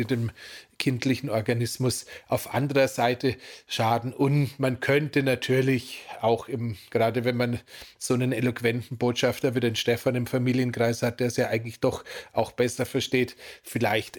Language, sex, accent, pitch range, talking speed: German, male, German, 120-135 Hz, 145 wpm